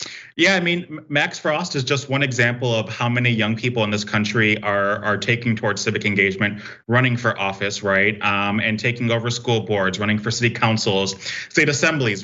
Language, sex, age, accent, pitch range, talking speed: English, male, 30-49, American, 105-120 Hz, 190 wpm